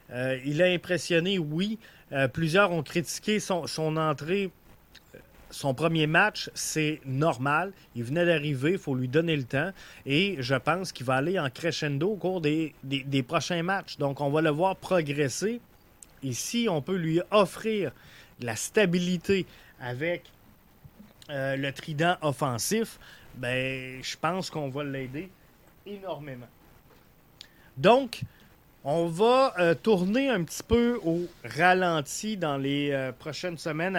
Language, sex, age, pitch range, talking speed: French, male, 30-49, 135-175 Hz, 145 wpm